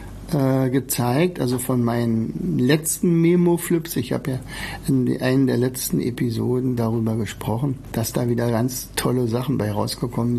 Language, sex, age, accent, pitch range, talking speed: German, male, 60-79, German, 115-145 Hz, 140 wpm